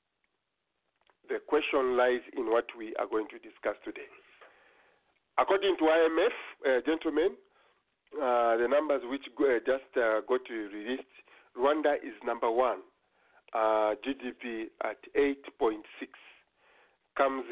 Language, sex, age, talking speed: English, male, 50-69, 120 wpm